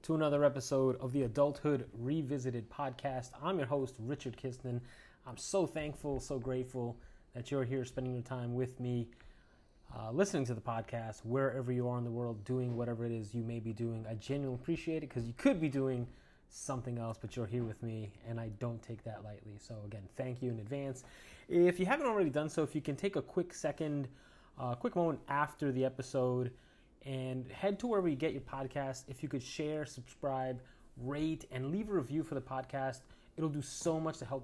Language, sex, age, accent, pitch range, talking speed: English, male, 20-39, American, 120-145 Hz, 210 wpm